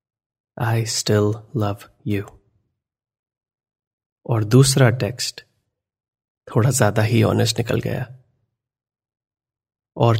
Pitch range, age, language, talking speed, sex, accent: 110-130 Hz, 30-49, Hindi, 80 wpm, male, native